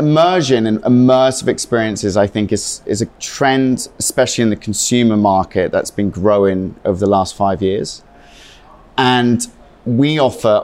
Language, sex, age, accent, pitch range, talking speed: English, male, 30-49, British, 100-125 Hz, 145 wpm